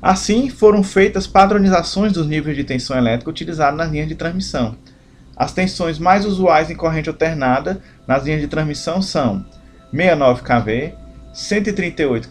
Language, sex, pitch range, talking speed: Portuguese, male, 130-185 Hz, 140 wpm